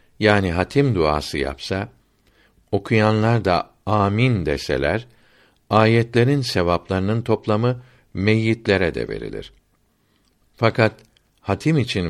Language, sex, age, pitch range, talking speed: Turkish, male, 60-79, 90-120 Hz, 85 wpm